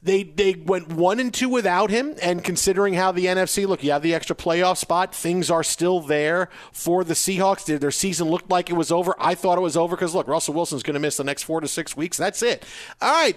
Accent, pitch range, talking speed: American, 140-185 Hz, 255 wpm